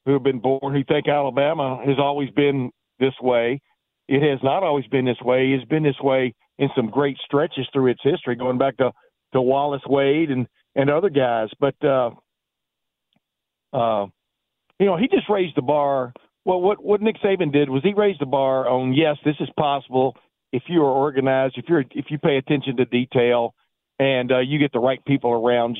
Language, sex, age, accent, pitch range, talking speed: English, male, 50-69, American, 125-150 Hz, 200 wpm